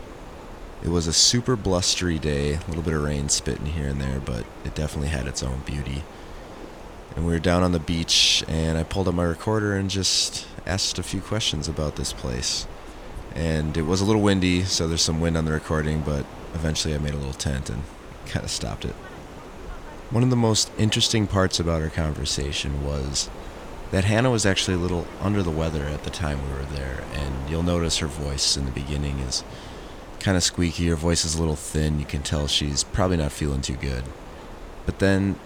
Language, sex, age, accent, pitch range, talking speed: English, male, 30-49, American, 70-90 Hz, 210 wpm